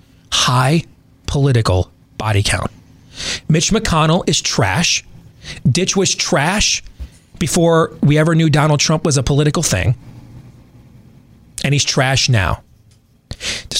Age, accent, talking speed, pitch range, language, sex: 30-49, American, 115 wpm, 120-165 Hz, English, male